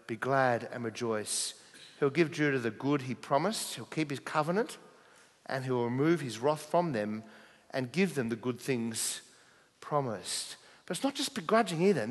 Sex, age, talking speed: male, 40-59, 180 wpm